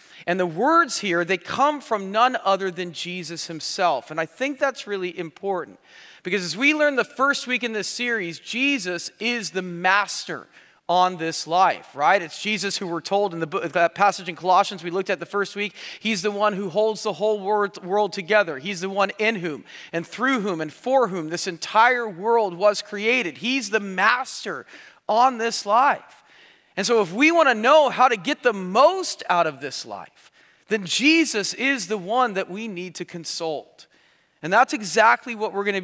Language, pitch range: English, 175-230 Hz